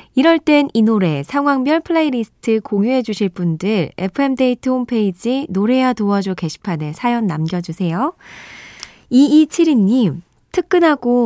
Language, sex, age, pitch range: Korean, female, 20-39, 185-260 Hz